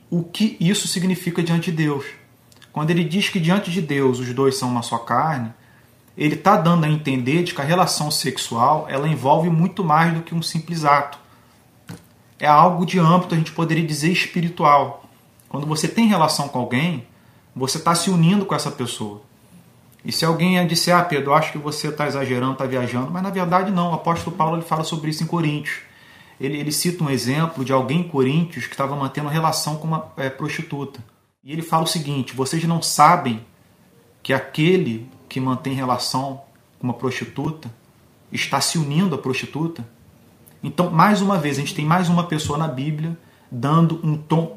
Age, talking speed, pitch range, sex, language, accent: 40-59, 185 wpm, 135-175 Hz, male, Portuguese, Brazilian